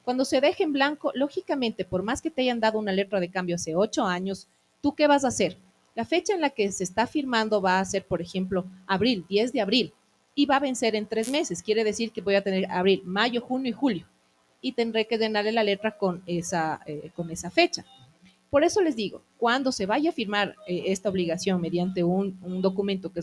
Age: 30-49